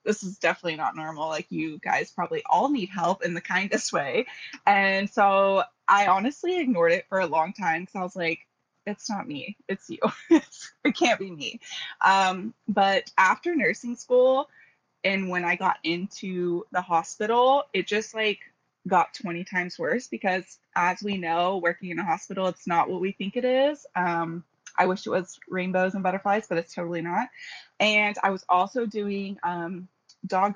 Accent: American